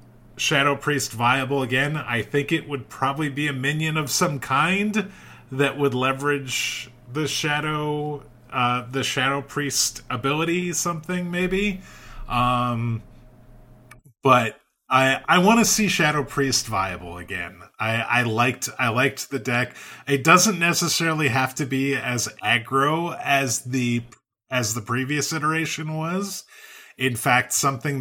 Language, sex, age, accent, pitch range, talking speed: English, male, 30-49, American, 115-145 Hz, 135 wpm